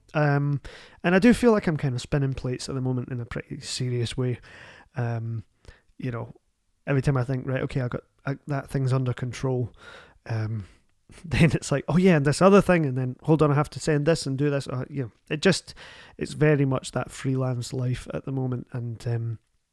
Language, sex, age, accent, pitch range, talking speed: English, male, 20-39, British, 125-155 Hz, 215 wpm